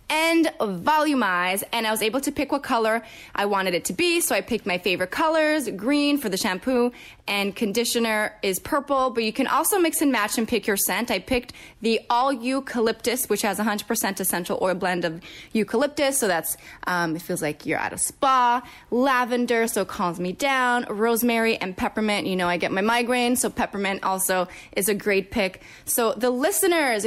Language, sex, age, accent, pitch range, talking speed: English, female, 20-39, American, 205-295 Hz, 195 wpm